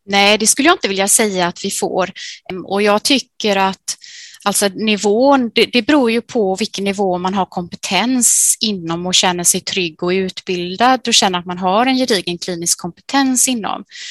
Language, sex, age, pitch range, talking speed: Swedish, female, 20-39, 180-225 Hz, 185 wpm